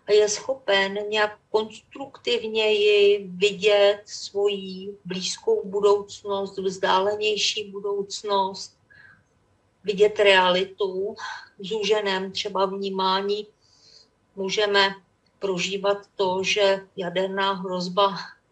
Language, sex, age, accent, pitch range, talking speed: Czech, female, 40-59, native, 185-205 Hz, 70 wpm